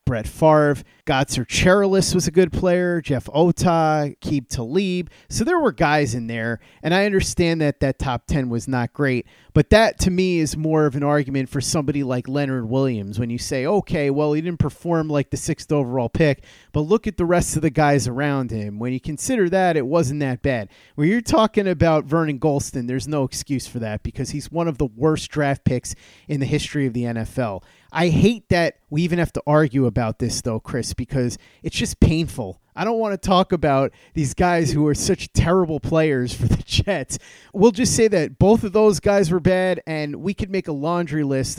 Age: 30-49